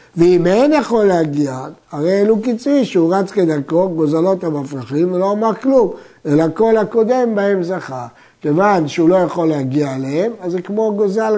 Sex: male